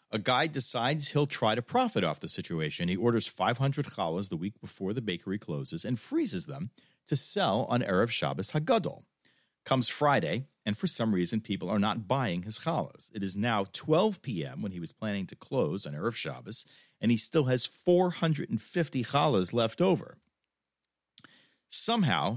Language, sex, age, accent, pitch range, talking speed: English, male, 40-59, American, 105-150 Hz, 170 wpm